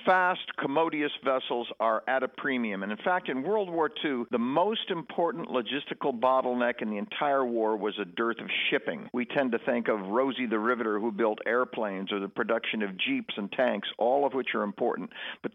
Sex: male